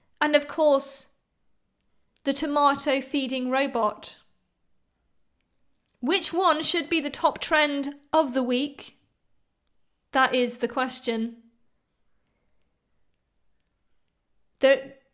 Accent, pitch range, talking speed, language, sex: British, 235-300 Hz, 85 wpm, English, female